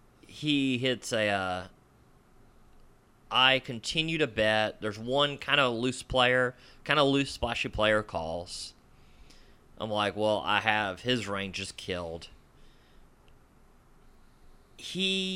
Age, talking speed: 30-49, 115 wpm